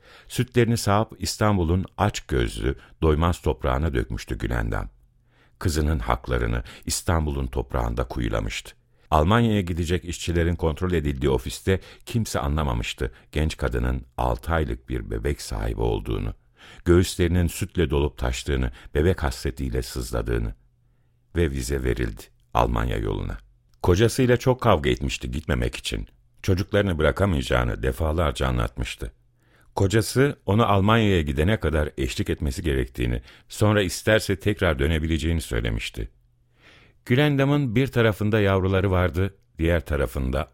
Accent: native